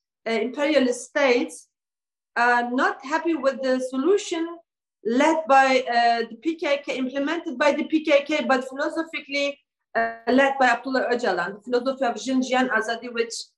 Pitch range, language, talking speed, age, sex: 245-295 Hz, English, 140 wpm, 40-59, female